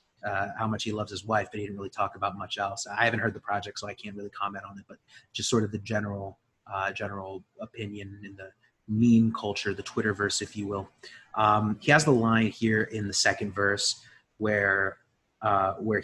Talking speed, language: 215 wpm, English